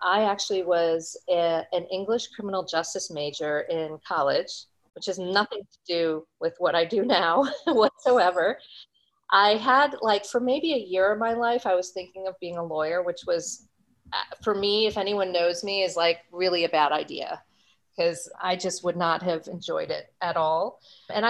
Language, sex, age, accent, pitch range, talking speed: English, female, 40-59, American, 170-215 Hz, 180 wpm